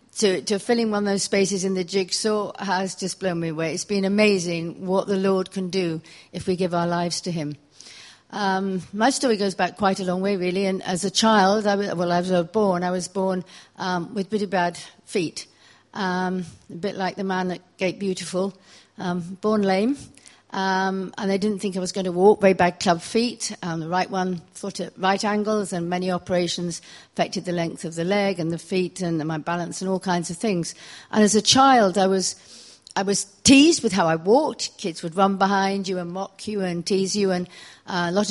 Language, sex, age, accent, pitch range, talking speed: English, female, 60-79, British, 180-200 Hz, 220 wpm